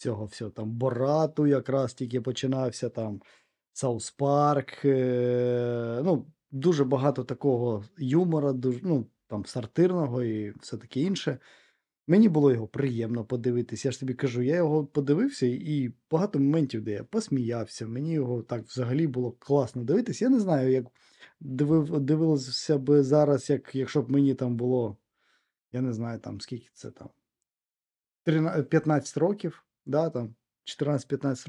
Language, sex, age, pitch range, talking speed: Ukrainian, male, 20-39, 120-155 Hz, 140 wpm